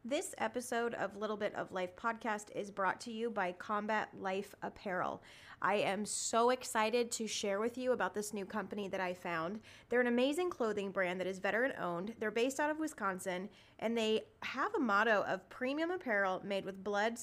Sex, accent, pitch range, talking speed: female, American, 200-250 Hz, 195 wpm